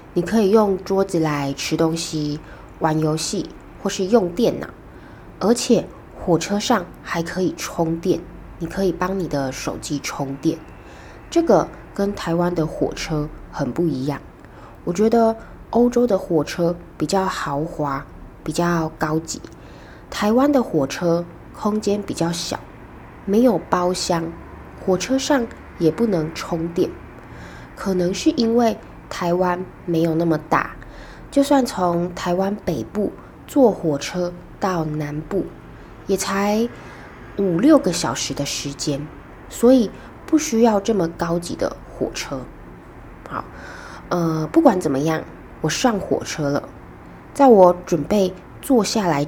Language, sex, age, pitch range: Chinese, female, 20-39, 160-200 Hz